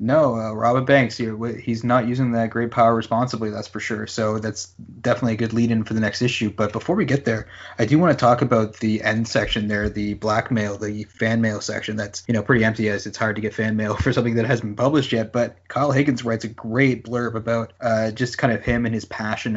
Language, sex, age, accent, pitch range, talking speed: English, male, 20-39, American, 110-120 Hz, 245 wpm